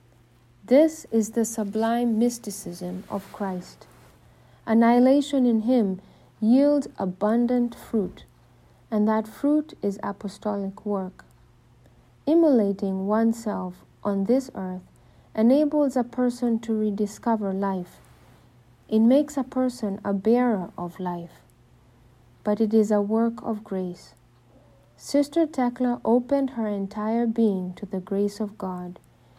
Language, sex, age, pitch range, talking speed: English, female, 50-69, 190-245 Hz, 115 wpm